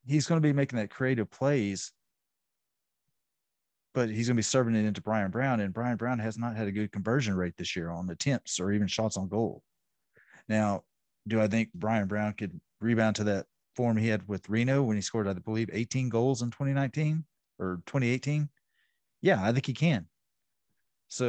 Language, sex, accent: English, male, American